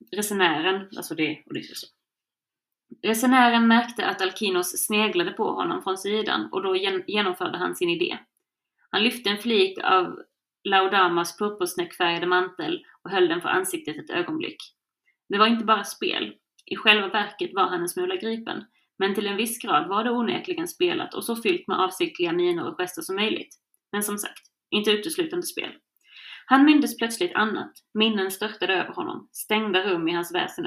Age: 30-49